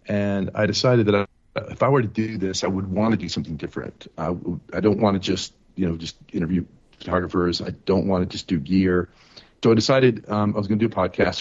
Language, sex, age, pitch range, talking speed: English, male, 40-59, 90-110 Hz, 240 wpm